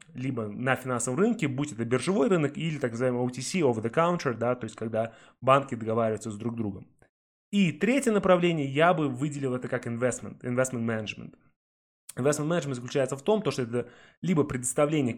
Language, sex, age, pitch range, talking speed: Russian, male, 20-39, 115-150 Hz, 170 wpm